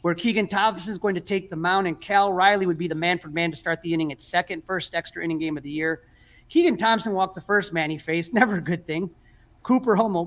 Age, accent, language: 30-49, American, English